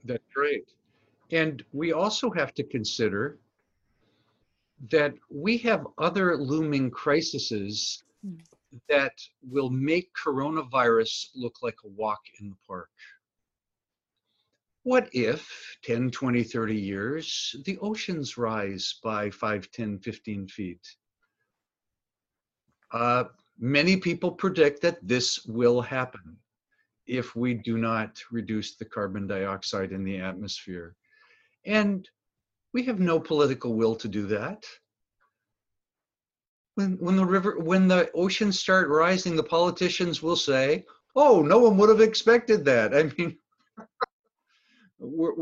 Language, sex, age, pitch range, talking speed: English, male, 60-79, 115-185 Hz, 120 wpm